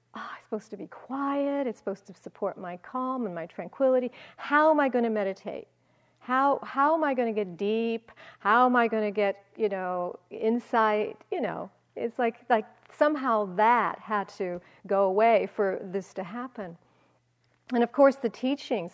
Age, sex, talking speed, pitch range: 50-69, female, 185 wpm, 200-265 Hz